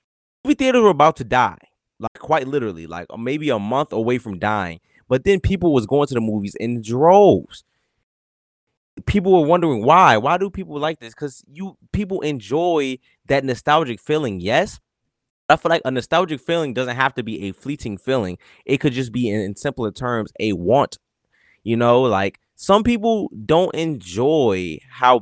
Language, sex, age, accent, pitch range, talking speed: English, male, 20-39, American, 110-165 Hz, 175 wpm